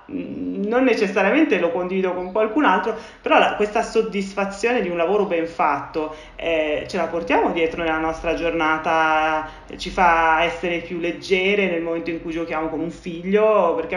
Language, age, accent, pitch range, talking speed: Italian, 30-49, native, 155-195 Hz, 165 wpm